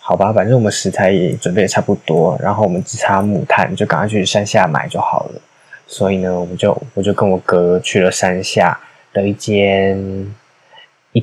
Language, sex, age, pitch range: Chinese, male, 20-39, 95-120 Hz